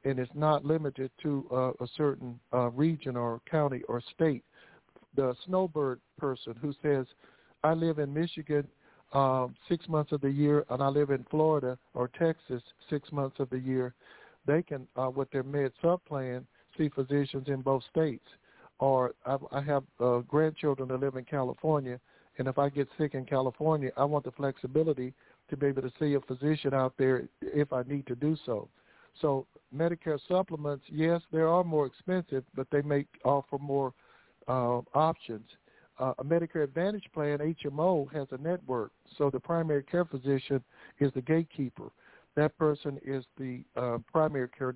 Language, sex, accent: English, male, American